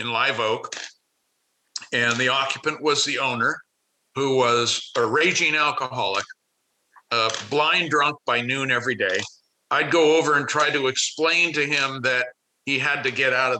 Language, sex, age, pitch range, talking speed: English, male, 50-69, 125-150 Hz, 165 wpm